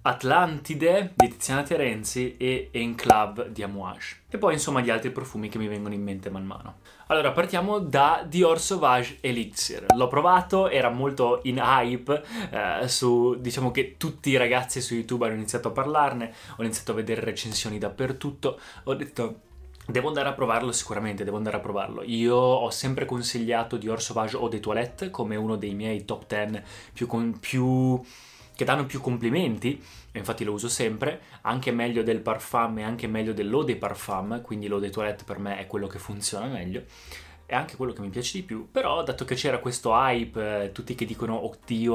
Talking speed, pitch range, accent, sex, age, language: 180 wpm, 110-130 Hz, native, male, 20-39, Italian